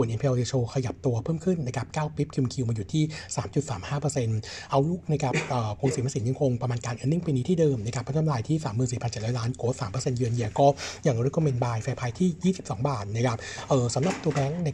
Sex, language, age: male, Thai, 60-79